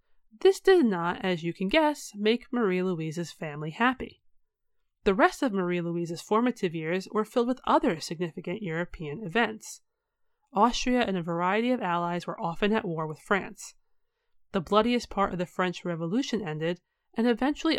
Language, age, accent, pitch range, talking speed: English, 30-49, American, 175-240 Hz, 160 wpm